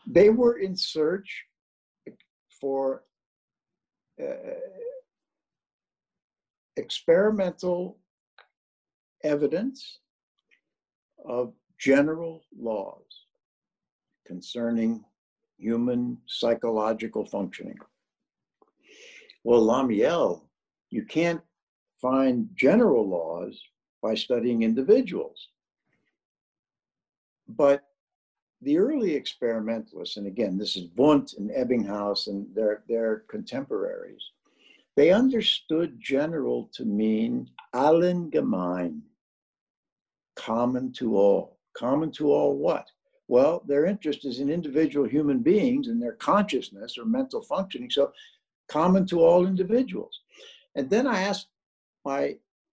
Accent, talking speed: American, 90 wpm